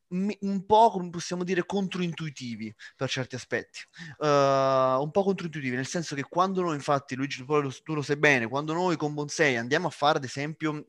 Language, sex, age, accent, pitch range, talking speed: Italian, male, 20-39, native, 135-185 Hz, 180 wpm